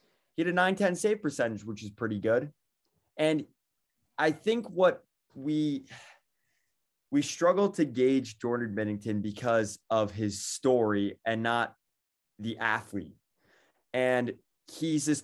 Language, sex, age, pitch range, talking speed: English, male, 20-39, 115-155 Hz, 130 wpm